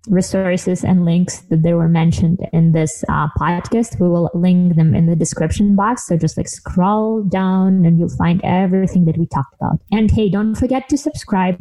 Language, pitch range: English, 165-195 Hz